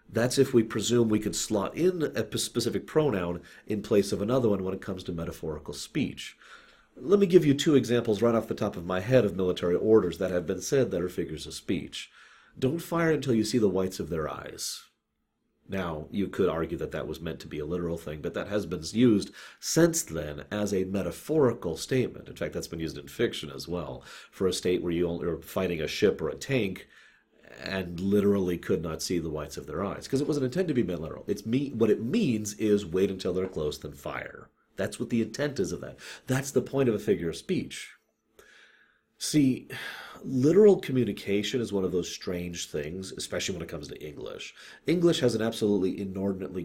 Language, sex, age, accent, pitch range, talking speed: English, male, 40-59, American, 90-125 Hz, 215 wpm